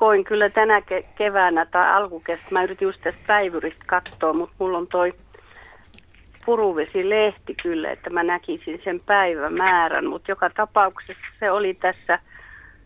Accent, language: native, Finnish